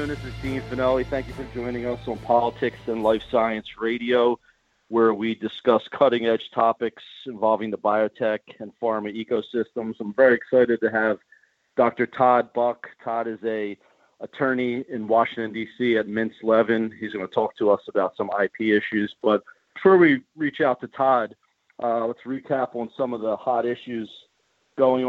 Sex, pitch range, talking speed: male, 110-130 Hz, 170 wpm